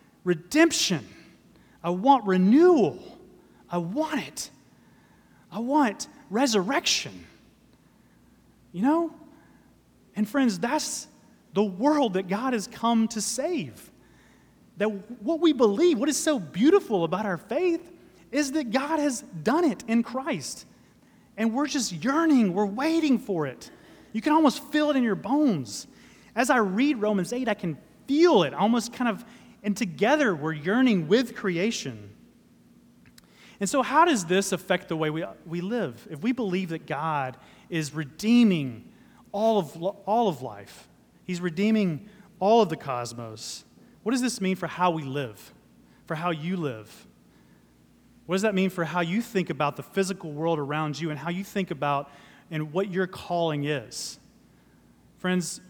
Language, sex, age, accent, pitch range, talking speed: English, male, 30-49, American, 170-260 Hz, 155 wpm